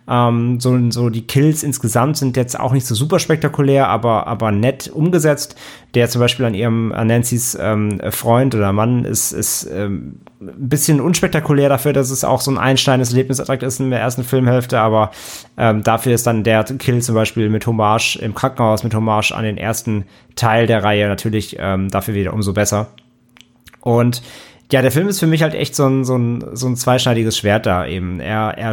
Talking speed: 200 wpm